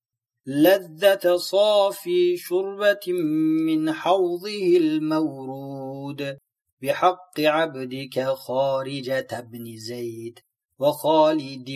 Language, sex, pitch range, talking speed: Turkish, male, 135-180 Hz, 60 wpm